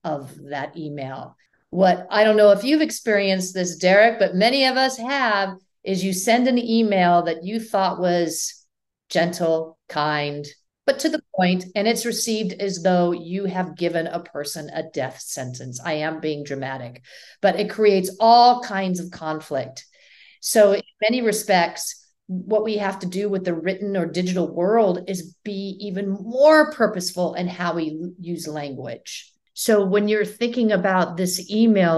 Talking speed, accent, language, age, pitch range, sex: 165 wpm, American, English, 50-69, 170-205 Hz, female